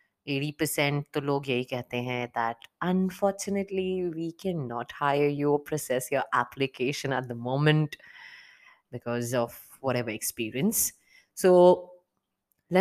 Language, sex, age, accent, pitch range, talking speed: Hindi, female, 20-39, native, 125-180 Hz, 120 wpm